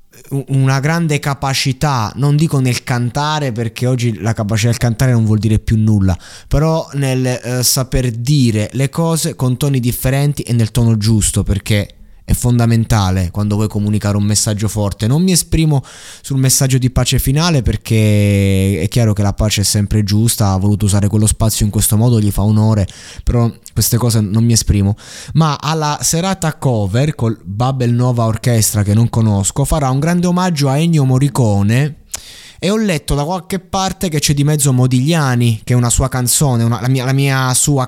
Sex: male